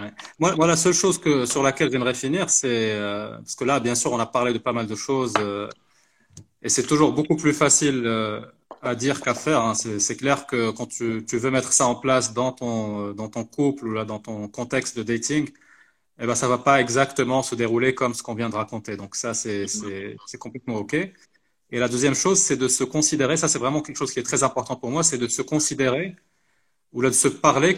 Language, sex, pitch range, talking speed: Arabic, male, 115-145 Hz, 240 wpm